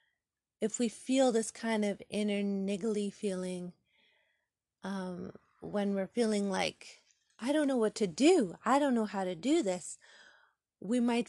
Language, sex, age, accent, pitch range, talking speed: English, female, 30-49, American, 190-225 Hz, 155 wpm